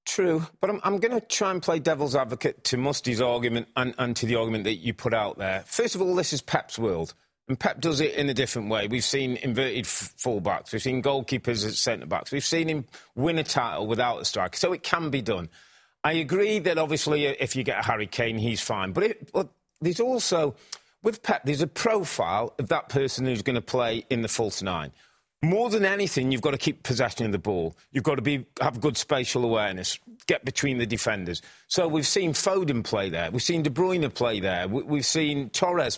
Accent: British